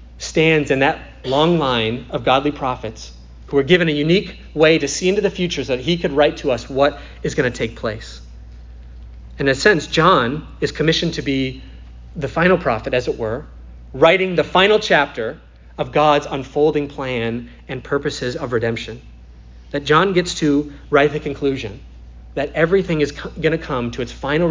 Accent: American